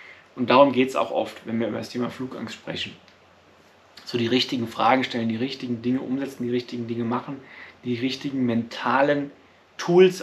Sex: male